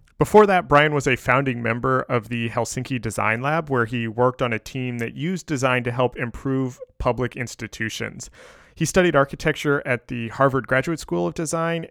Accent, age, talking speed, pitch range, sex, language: American, 30-49, 180 wpm, 120-150 Hz, male, English